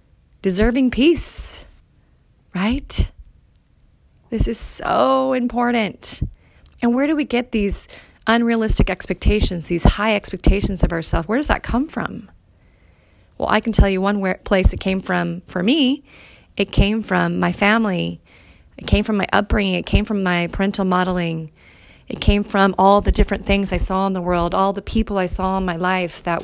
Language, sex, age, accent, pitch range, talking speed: English, female, 30-49, American, 175-220 Hz, 170 wpm